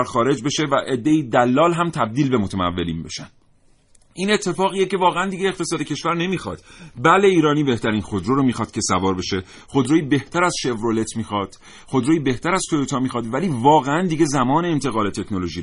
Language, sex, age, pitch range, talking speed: Persian, male, 40-59, 120-165 Hz, 165 wpm